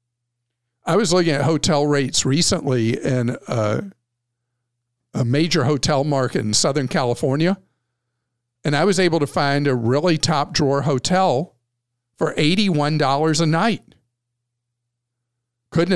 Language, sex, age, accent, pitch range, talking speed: English, male, 50-69, American, 120-155 Hz, 115 wpm